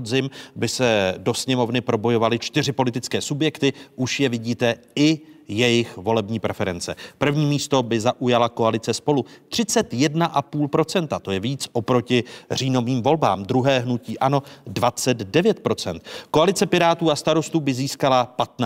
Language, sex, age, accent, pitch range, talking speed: Czech, male, 40-59, native, 110-150 Hz, 125 wpm